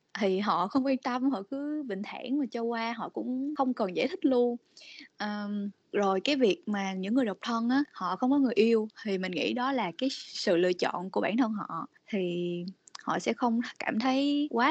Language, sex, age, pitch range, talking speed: Vietnamese, female, 20-39, 195-265 Hz, 215 wpm